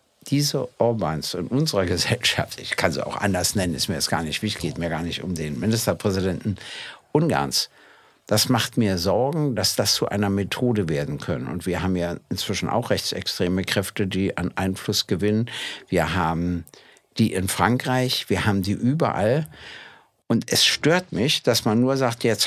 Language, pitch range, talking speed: German, 95-130 Hz, 175 wpm